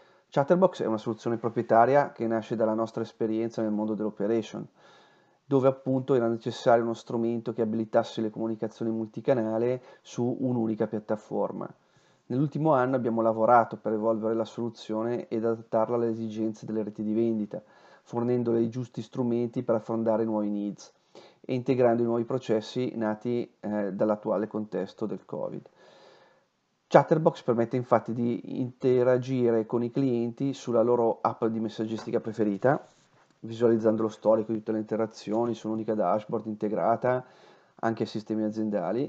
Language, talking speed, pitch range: Italian, 140 wpm, 110-120 Hz